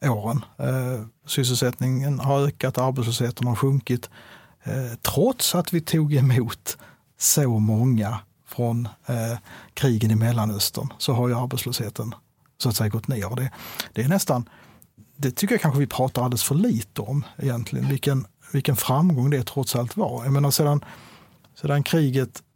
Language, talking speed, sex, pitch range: Swedish, 145 wpm, male, 120-145 Hz